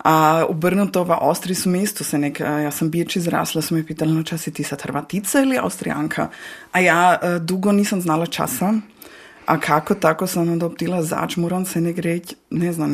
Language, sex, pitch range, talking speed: Croatian, female, 160-185 Hz, 220 wpm